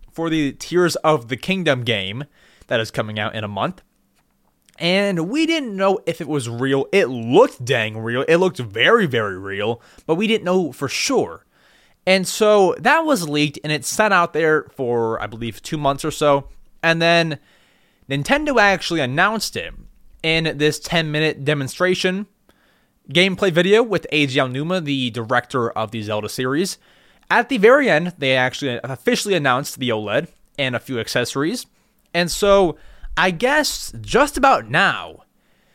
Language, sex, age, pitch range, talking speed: English, male, 20-39, 140-200 Hz, 160 wpm